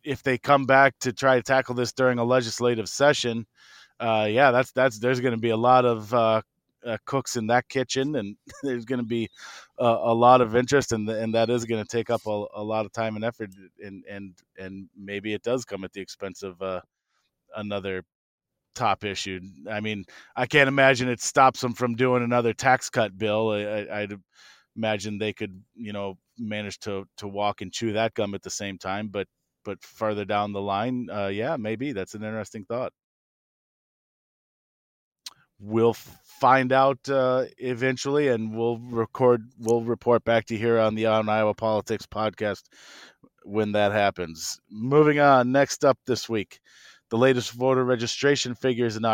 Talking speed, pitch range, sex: 185 wpm, 105-125 Hz, male